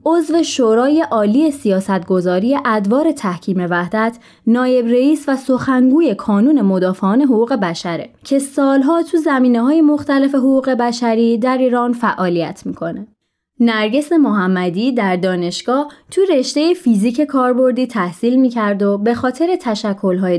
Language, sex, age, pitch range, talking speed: Persian, female, 20-39, 195-285 Hz, 120 wpm